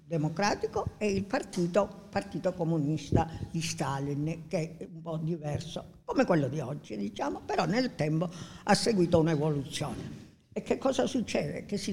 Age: 50-69